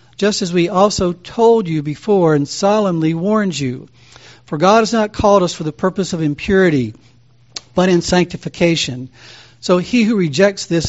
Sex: male